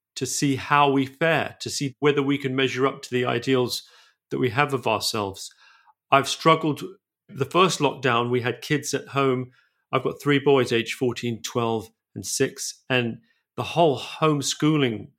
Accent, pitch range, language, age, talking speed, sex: British, 120-150 Hz, English, 40-59, 170 wpm, male